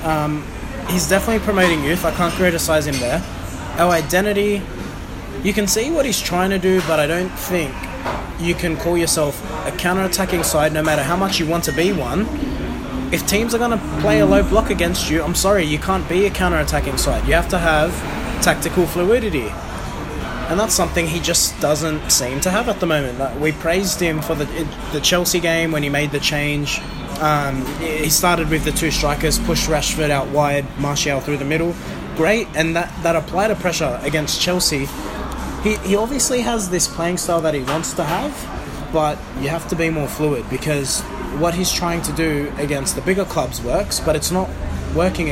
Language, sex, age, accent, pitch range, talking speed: English, male, 20-39, Australian, 145-180 Hz, 195 wpm